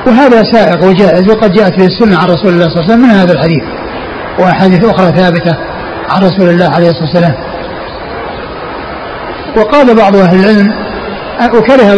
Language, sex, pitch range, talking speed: Arabic, male, 185-225 Hz, 155 wpm